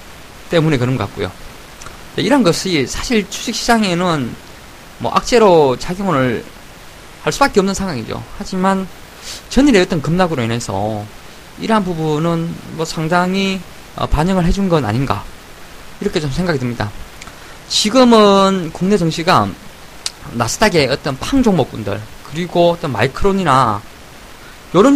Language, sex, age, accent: Korean, male, 20-39, native